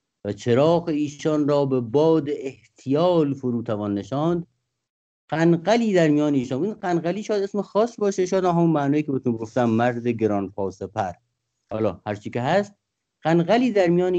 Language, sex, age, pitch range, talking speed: English, male, 50-69, 110-155 Hz, 150 wpm